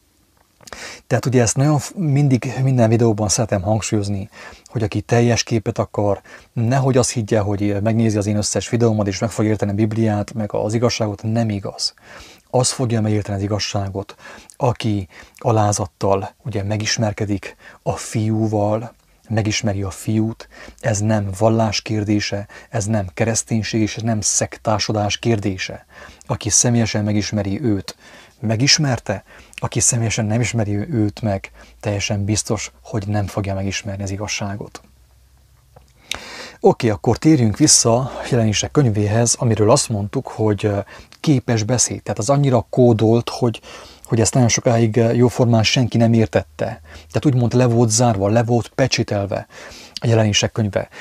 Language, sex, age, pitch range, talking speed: English, male, 30-49, 105-120 Hz, 135 wpm